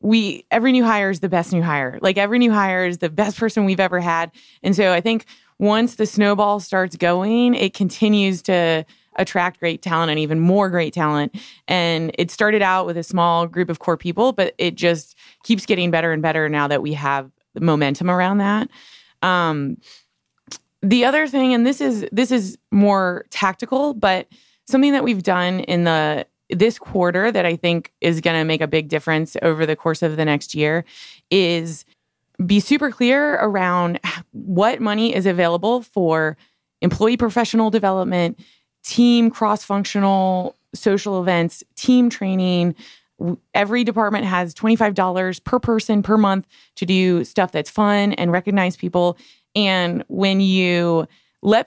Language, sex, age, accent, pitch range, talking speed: English, female, 20-39, American, 170-220 Hz, 165 wpm